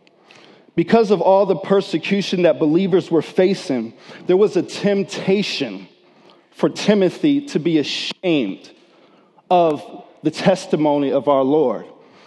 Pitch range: 165-200 Hz